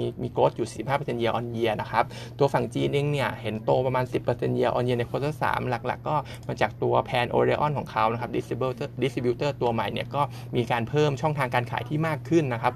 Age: 20-39